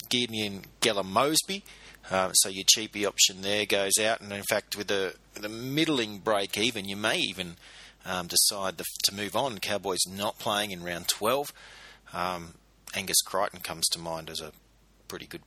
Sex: male